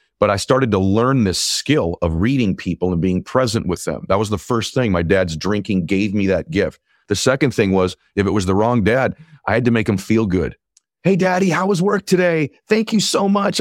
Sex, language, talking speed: male, English, 240 wpm